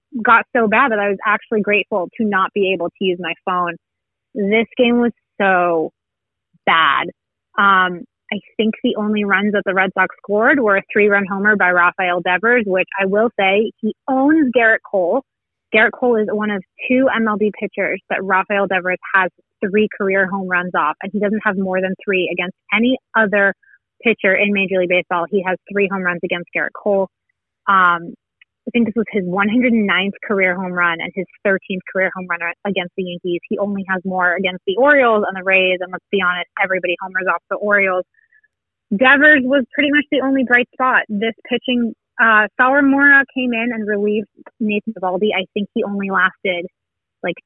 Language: English